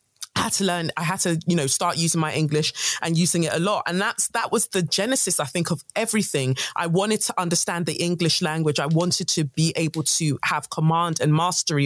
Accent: British